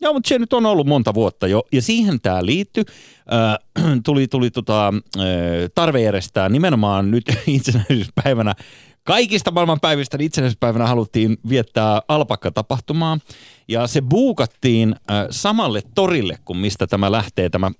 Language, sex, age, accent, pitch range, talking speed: Finnish, male, 30-49, native, 105-145 Hz, 125 wpm